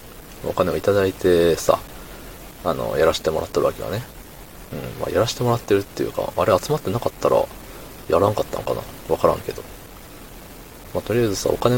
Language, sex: Japanese, male